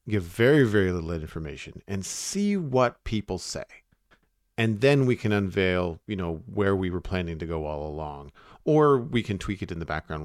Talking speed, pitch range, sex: 195 wpm, 85-115 Hz, male